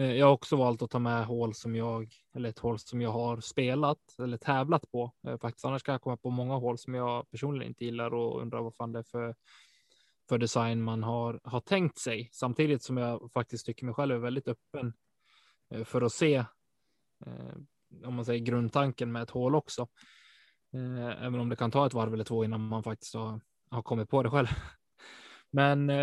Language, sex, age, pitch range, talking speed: Swedish, male, 20-39, 115-140 Hz, 200 wpm